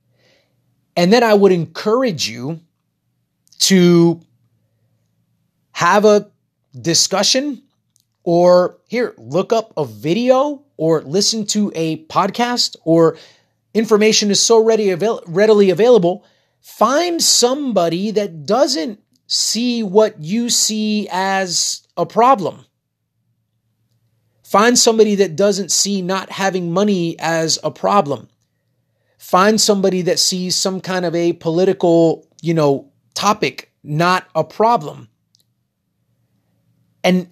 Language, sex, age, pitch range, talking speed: English, male, 30-49, 130-215 Hz, 105 wpm